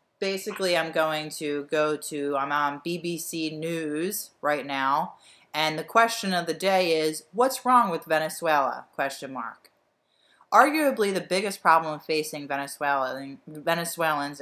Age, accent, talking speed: 30-49, American, 120 wpm